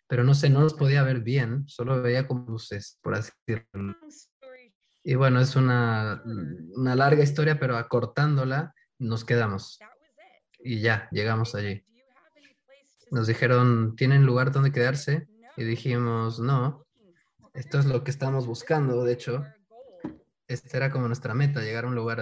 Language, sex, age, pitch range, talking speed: English, male, 20-39, 120-155 Hz, 150 wpm